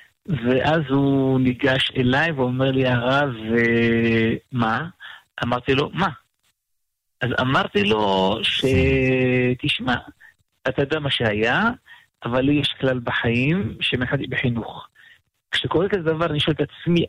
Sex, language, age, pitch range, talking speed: male, Hebrew, 50-69, 125-165 Hz, 125 wpm